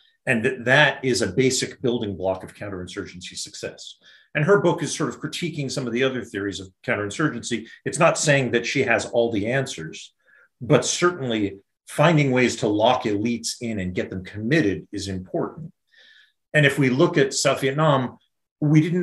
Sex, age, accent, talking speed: male, 40-59, American, 175 wpm